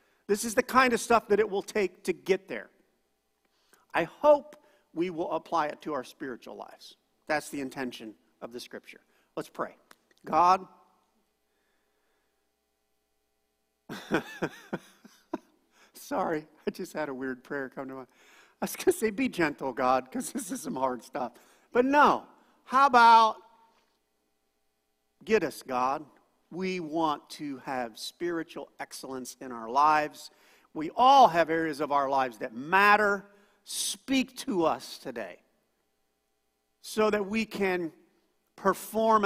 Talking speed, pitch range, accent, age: 140 wpm, 130-220 Hz, American, 50-69